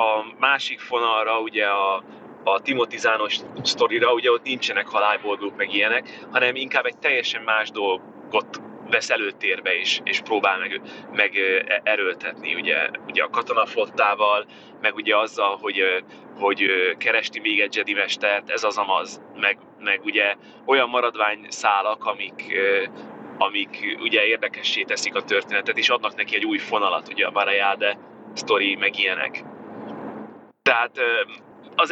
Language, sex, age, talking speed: Hungarian, male, 30-49, 135 wpm